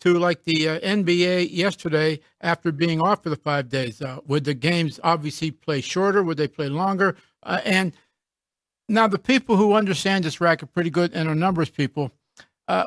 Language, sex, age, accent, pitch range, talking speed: English, male, 60-79, American, 160-200 Hz, 190 wpm